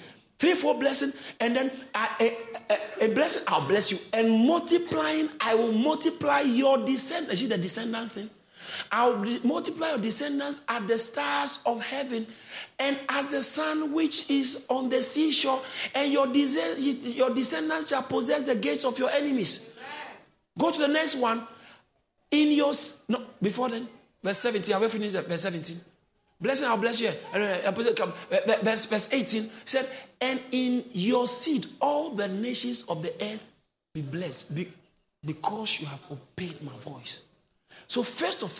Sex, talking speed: male, 150 wpm